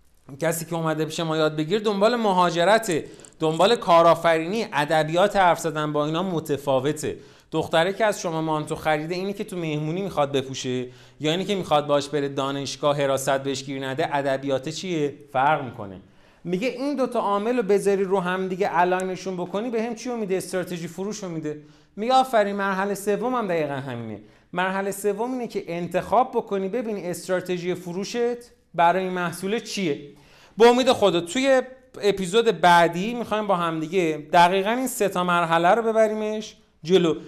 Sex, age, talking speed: male, 30-49, 155 wpm